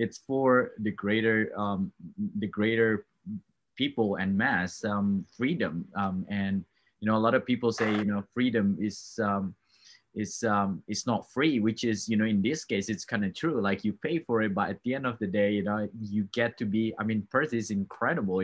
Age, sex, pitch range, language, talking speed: 20-39, male, 100-125 Hz, English, 210 wpm